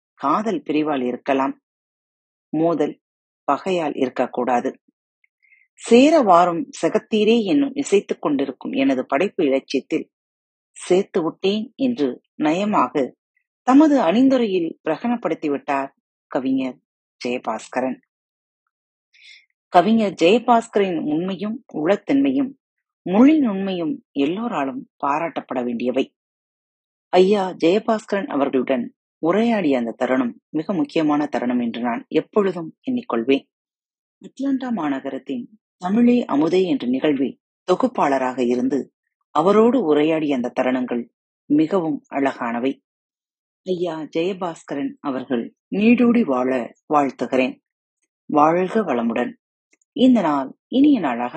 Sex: female